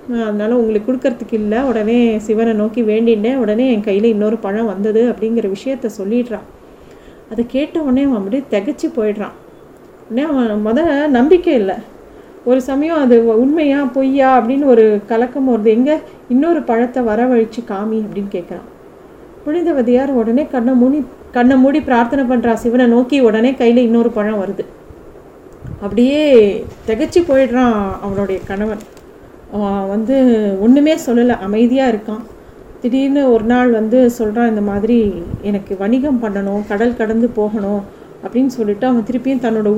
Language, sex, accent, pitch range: Tamil, female, native, 220-260 Hz